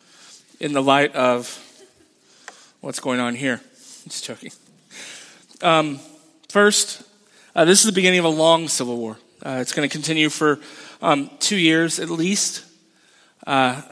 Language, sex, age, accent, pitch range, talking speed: English, male, 30-49, American, 140-180 Hz, 150 wpm